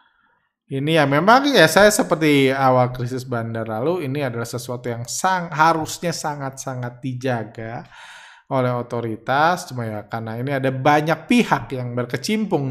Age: 20-39